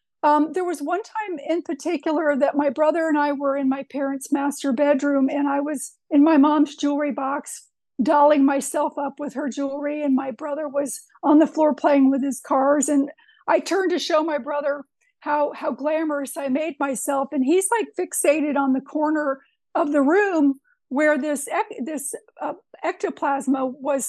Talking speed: 180 wpm